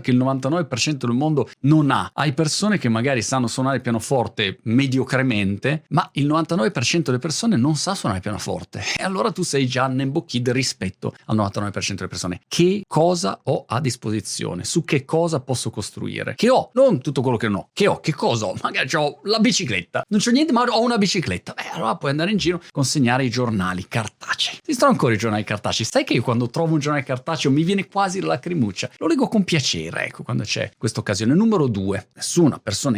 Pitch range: 110-165 Hz